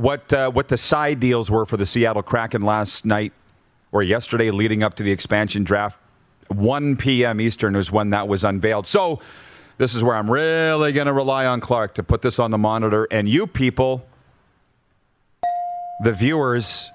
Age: 40-59